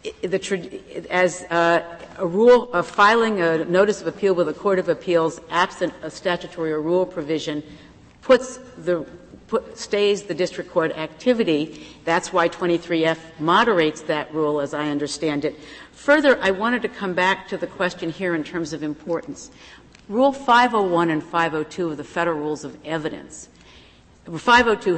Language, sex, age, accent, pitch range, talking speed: English, female, 50-69, American, 155-195 Hz, 155 wpm